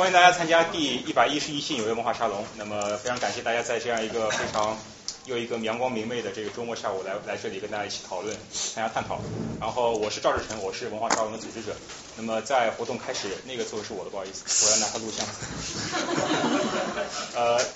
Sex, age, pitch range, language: male, 20-39, 105-130 Hz, Chinese